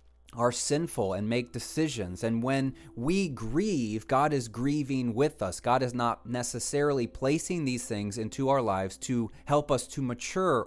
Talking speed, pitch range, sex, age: 165 wpm, 110-140 Hz, male, 30-49